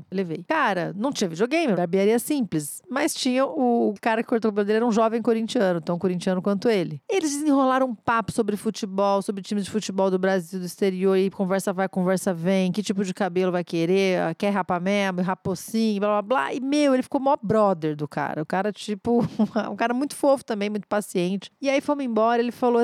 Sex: female